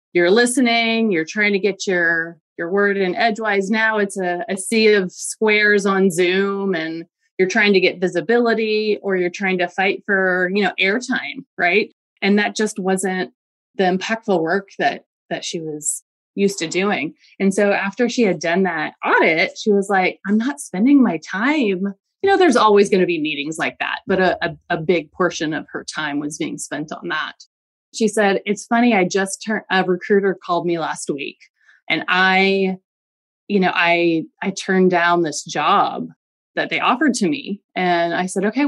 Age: 30-49